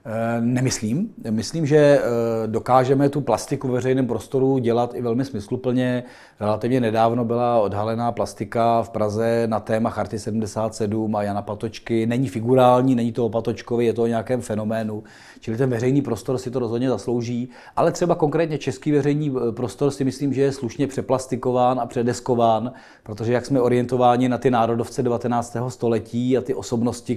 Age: 40-59